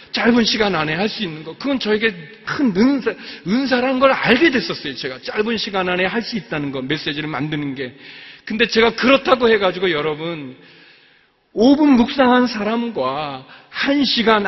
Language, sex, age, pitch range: Korean, male, 40-59, 205-270 Hz